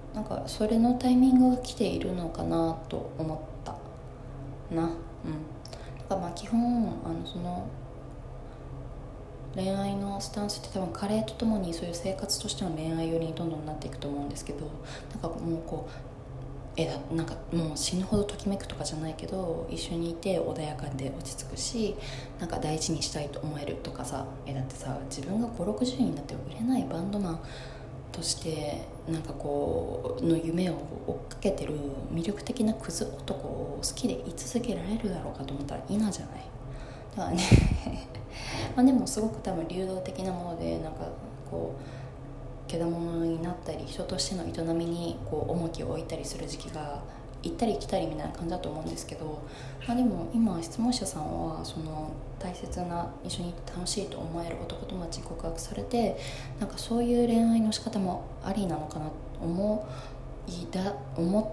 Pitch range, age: 135-190 Hz, 20-39